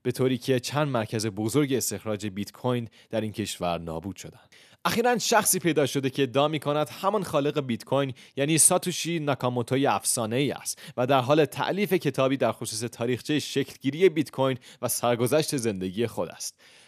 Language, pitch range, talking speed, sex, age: Persian, 125-160 Hz, 165 wpm, male, 30-49